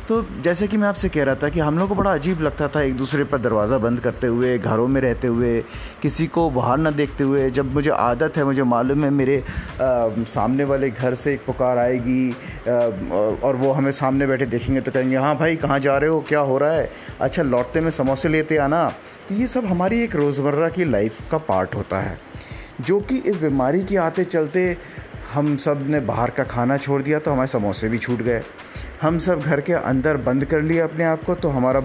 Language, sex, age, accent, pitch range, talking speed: Hindi, male, 30-49, native, 130-160 Hz, 225 wpm